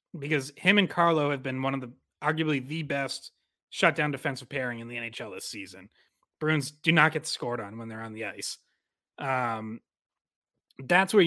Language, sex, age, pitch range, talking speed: English, male, 30-49, 130-160 Hz, 185 wpm